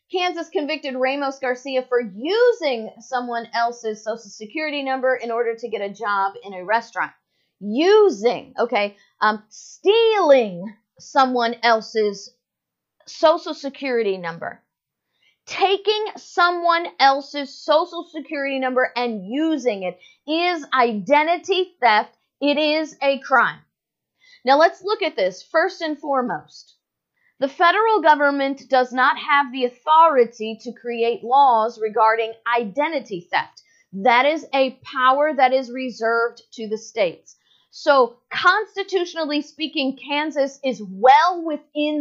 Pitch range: 235-315 Hz